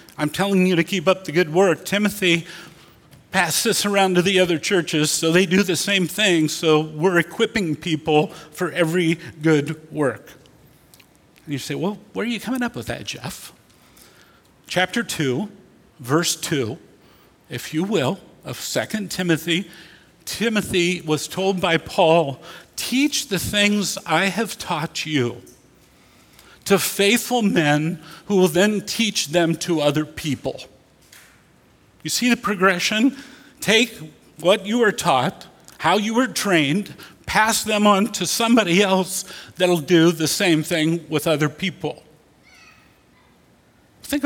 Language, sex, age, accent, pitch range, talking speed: English, male, 50-69, American, 160-200 Hz, 140 wpm